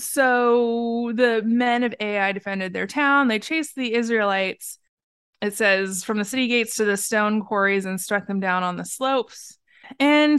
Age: 20-39